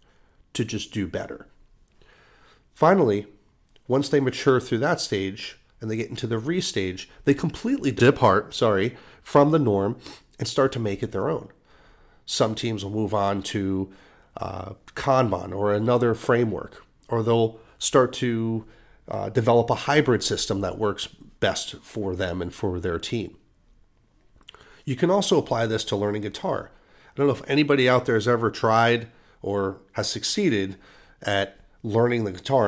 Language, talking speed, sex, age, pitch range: English, 160 wpm, male, 40-59, 100-130 Hz